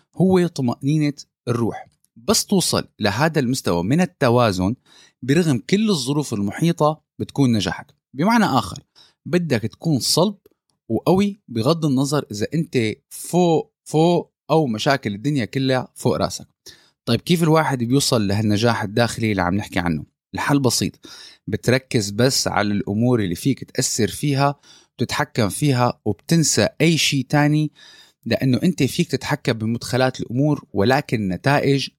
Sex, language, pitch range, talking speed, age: male, Arabic, 110-150 Hz, 125 wpm, 20-39